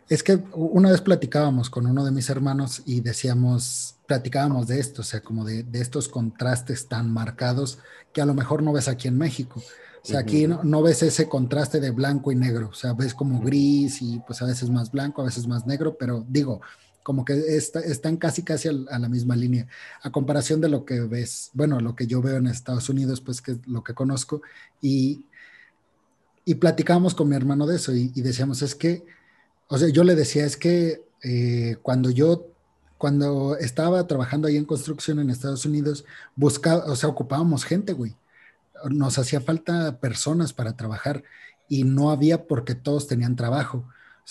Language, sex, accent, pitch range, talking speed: Spanish, male, Mexican, 125-150 Hz, 195 wpm